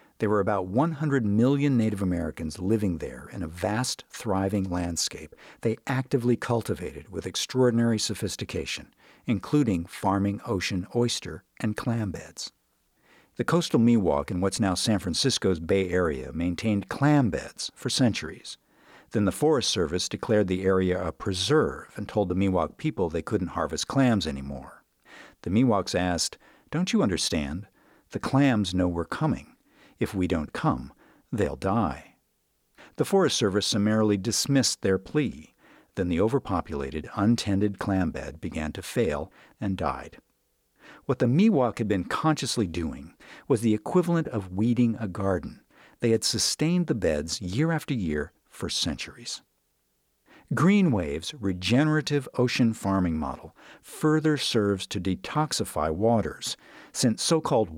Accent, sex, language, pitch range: American, male, English, 95-130 Hz